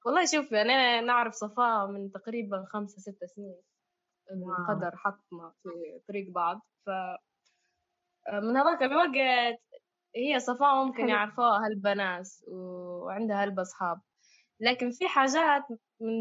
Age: 10-29